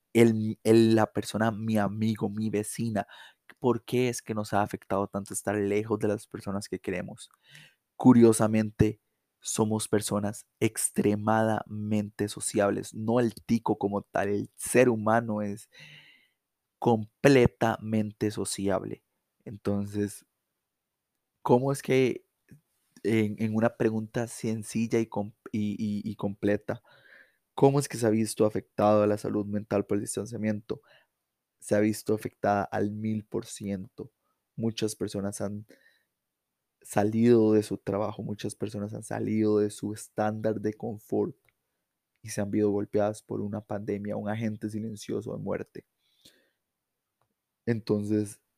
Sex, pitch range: male, 105-110 Hz